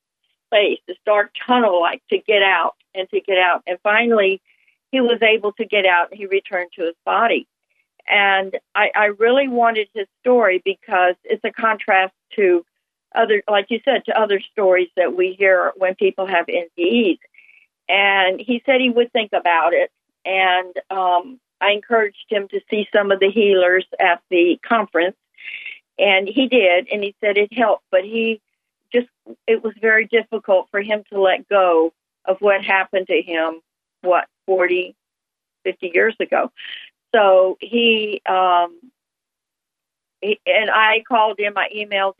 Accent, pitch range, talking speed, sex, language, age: American, 185-230 Hz, 160 wpm, female, English, 50-69